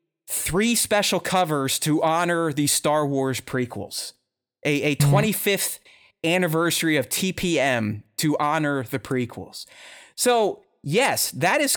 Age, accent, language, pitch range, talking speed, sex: 30-49, American, English, 145-205 Hz, 115 wpm, male